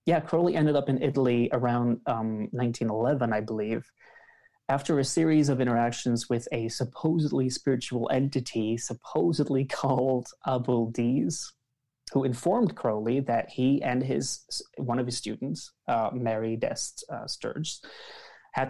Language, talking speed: English, 130 wpm